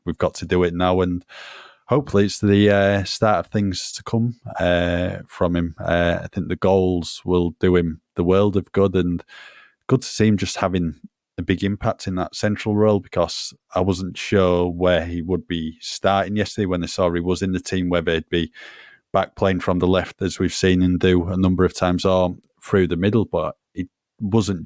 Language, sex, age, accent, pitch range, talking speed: English, male, 20-39, British, 90-100 Hz, 210 wpm